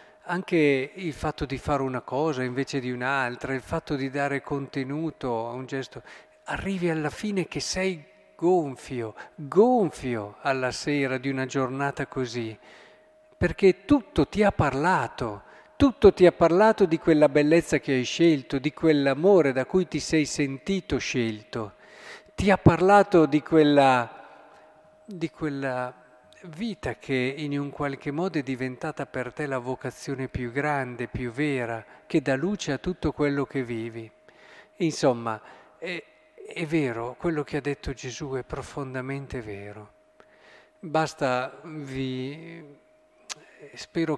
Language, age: Italian, 50-69